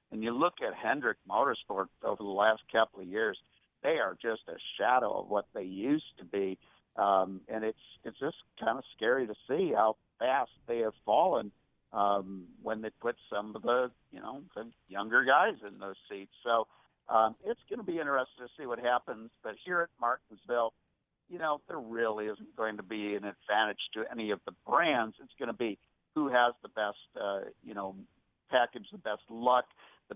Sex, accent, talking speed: male, American, 195 wpm